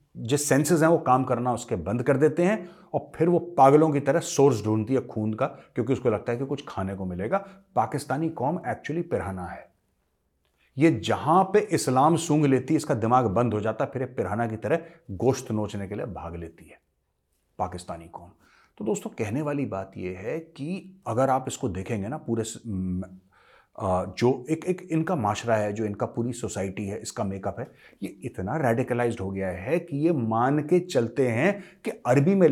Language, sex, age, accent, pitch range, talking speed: Hindi, male, 30-49, native, 100-150 Hz, 190 wpm